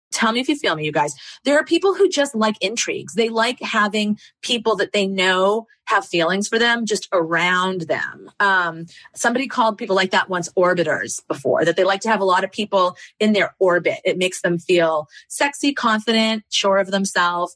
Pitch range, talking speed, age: 185-245 Hz, 200 wpm, 30-49